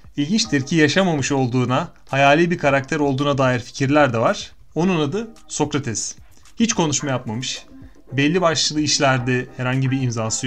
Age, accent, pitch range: 30-49, native, 130-175 Hz